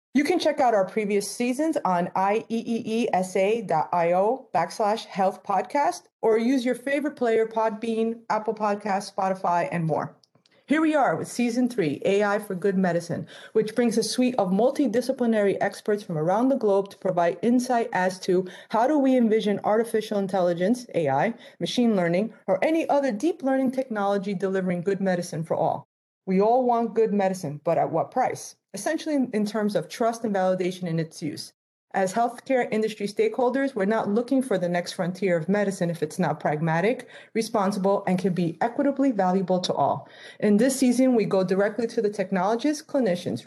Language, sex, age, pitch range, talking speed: English, female, 30-49, 185-235 Hz, 170 wpm